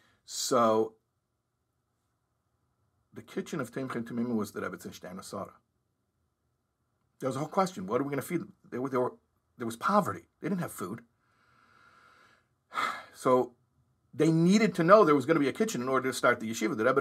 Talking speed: 175 wpm